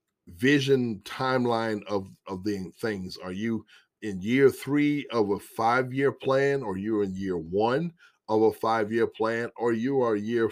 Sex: male